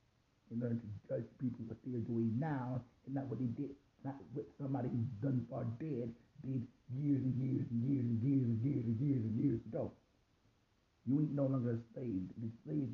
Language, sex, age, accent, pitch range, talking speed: English, male, 60-79, American, 115-130 Hz, 215 wpm